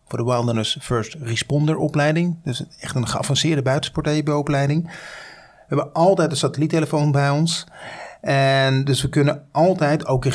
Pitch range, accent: 125-150 Hz, Dutch